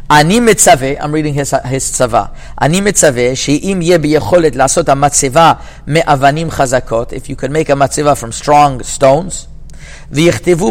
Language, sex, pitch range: English, male, 130-165 Hz